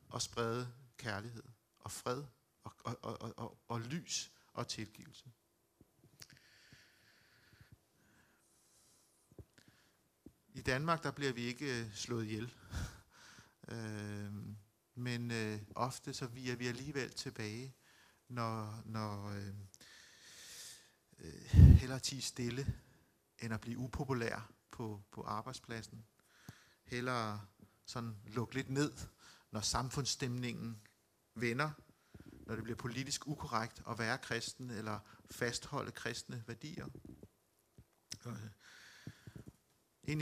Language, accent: Danish, native